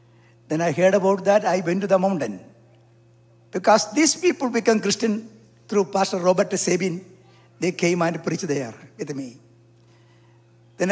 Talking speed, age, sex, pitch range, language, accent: 150 wpm, 60-79, male, 115-195 Hz, English, Indian